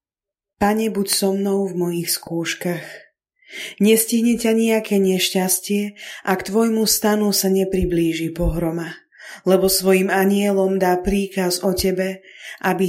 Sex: female